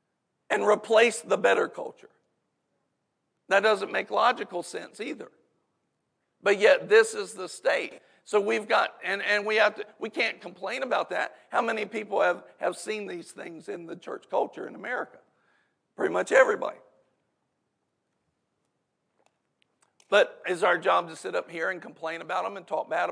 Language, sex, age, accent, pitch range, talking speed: English, male, 60-79, American, 210-295 Hz, 160 wpm